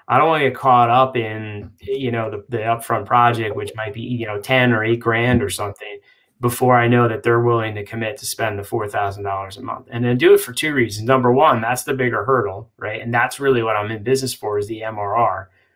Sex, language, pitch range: male, English, 110-130 Hz